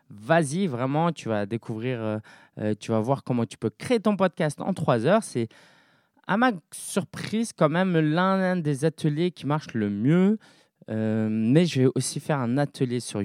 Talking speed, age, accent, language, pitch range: 180 wpm, 20-39, French, French, 110-160 Hz